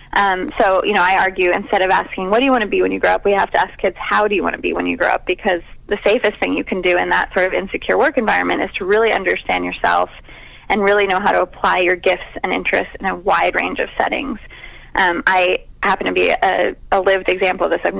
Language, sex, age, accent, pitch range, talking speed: English, female, 20-39, American, 175-205 Hz, 270 wpm